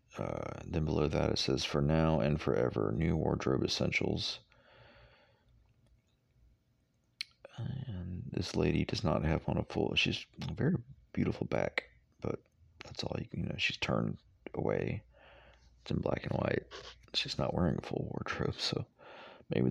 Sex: male